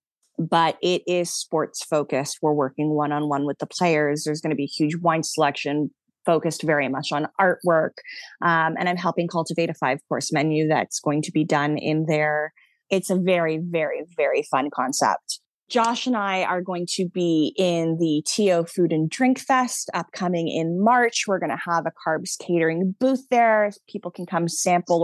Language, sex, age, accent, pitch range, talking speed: English, female, 20-39, American, 160-195 Hz, 175 wpm